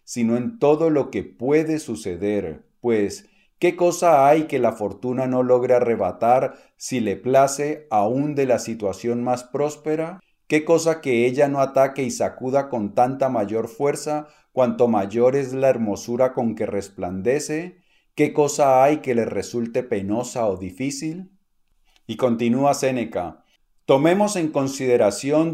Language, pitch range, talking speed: Spanish, 115-150 Hz, 145 wpm